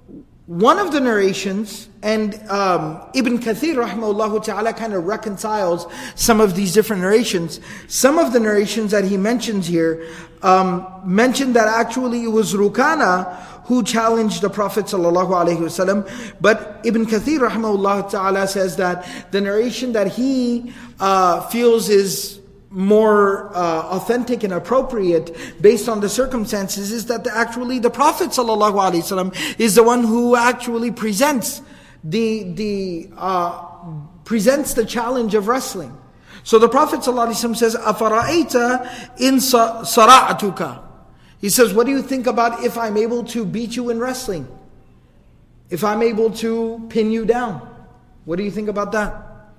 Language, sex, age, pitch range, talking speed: English, male, 50-69, 195-235 Hz, 140 wpm